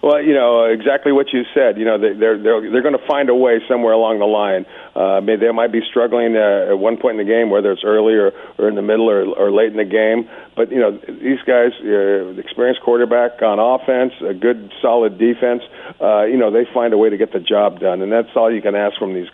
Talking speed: 255 wpm